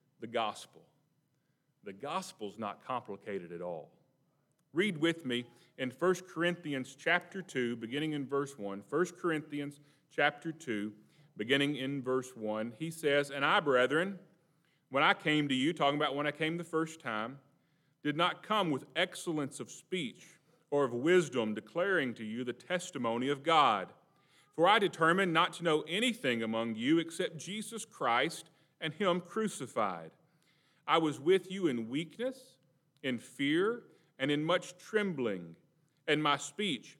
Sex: male